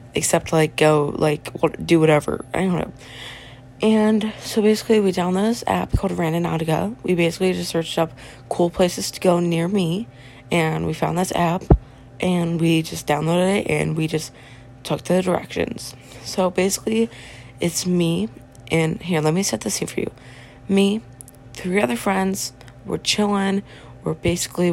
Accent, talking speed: American, 160 wpm